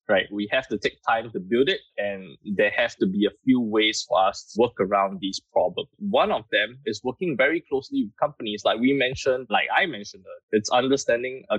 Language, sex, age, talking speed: English, male, 20-39, 215 wpm